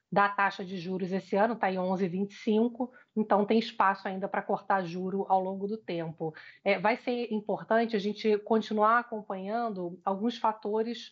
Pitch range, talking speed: 185-220 Hz, 160 wpm